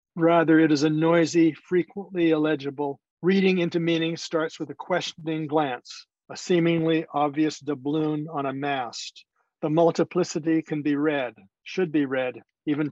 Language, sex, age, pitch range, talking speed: English, male, 50-69, 155-180 Hz, 145 wpm